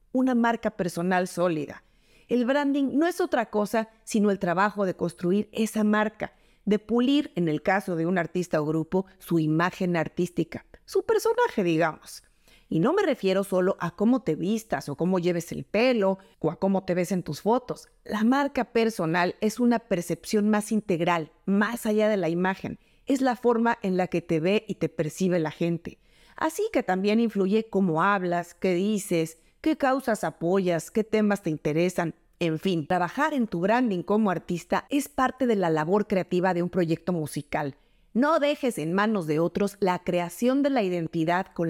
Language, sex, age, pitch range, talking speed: Spanish, female, 40-59, 175-230 Hz, 180 wpm